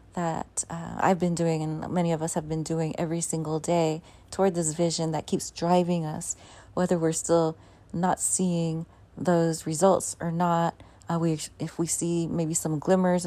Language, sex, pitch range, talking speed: English, female, 155-180 Hz, 175 wpm